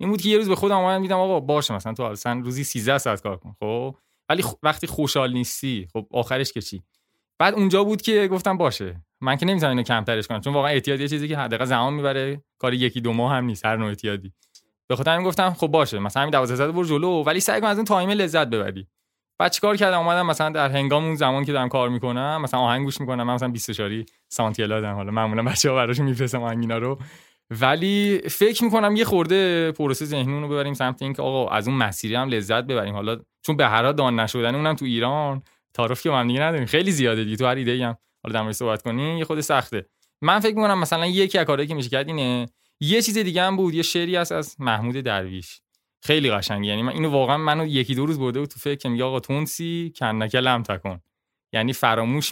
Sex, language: male, Persian